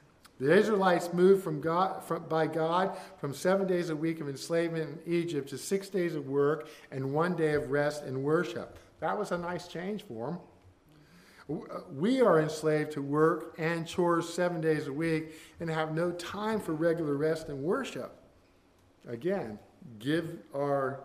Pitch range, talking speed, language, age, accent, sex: 120-160 Hz, 170 wpm, English, 50-69, American, male